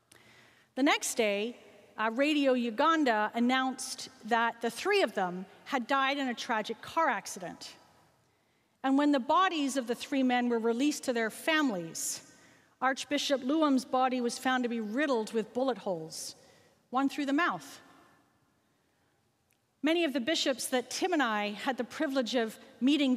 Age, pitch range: 40-59, 230-295 Hz